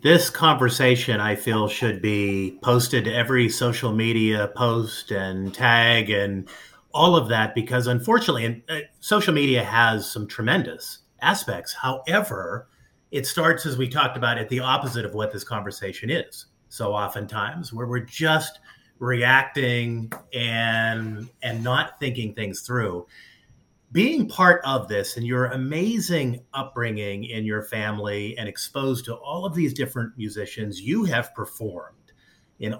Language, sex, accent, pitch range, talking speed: English, male, American, 110-135 Hz, 140 wpm